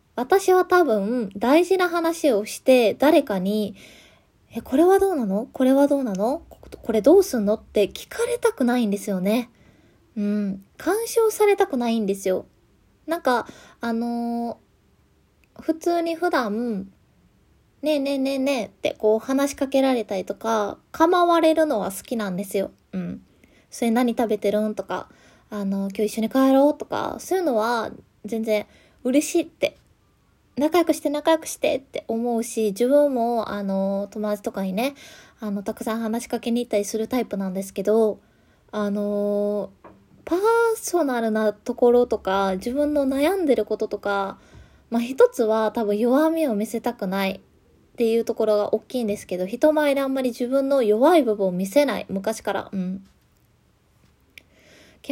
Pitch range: 210-295 Hz